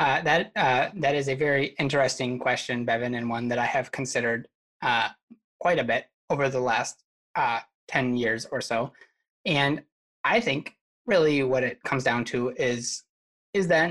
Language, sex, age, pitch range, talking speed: English, male, 20-39, 120-140 Hz, 175 wpm